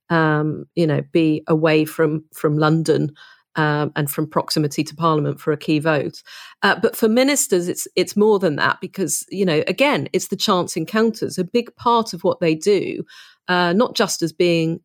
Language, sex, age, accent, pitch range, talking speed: English, female, 40-59, British, 160-195 Hz, 190 wpm